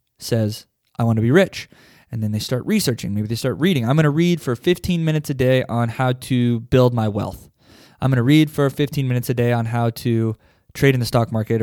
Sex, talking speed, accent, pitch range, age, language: male, 245 wpm, American, 115-140 Hz, 20-39, English